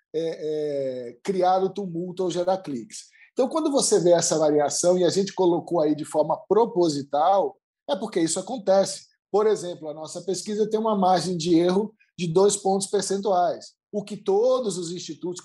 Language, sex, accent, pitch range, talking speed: Portuguese, male, Brazilian, 160-205 Hz, 165 wpm